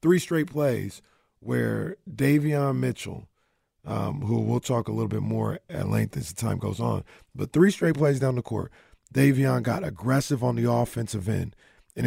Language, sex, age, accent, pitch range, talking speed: English, male, 40-59, American, 115-140 Hz, 180 wpm